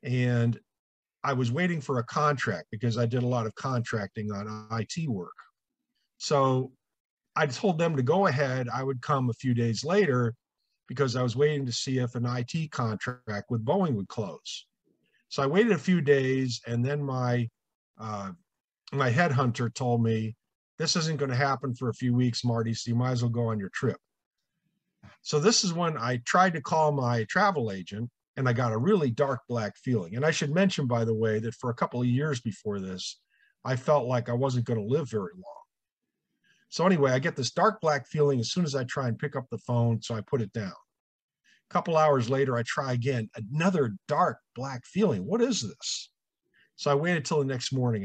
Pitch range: 120-155 Hz